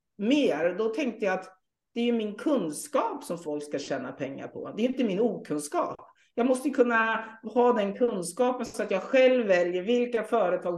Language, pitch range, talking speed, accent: Swedish, 160-245 Hz, 190 wpm, native